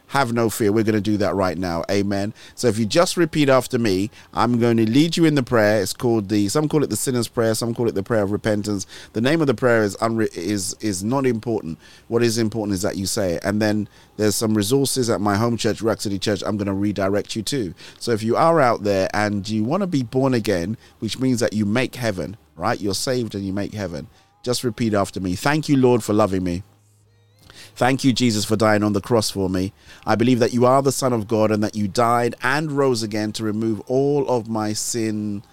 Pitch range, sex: 105-125 Hz, male